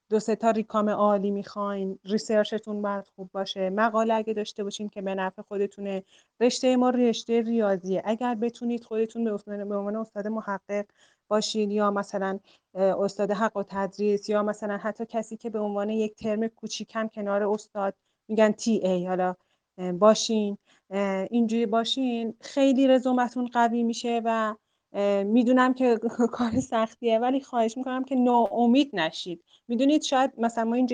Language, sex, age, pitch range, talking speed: Persian, female, 30-49, 200-235 Hz, 150 wpm